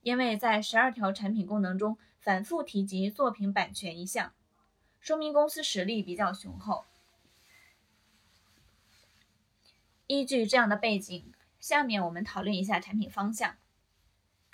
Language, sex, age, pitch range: Chinese, female, 20-39, 180-235 Hz